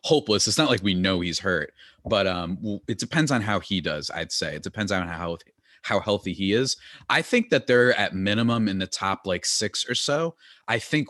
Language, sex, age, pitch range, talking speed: English, male, 30-49, 95-135 Hz, 225 wpm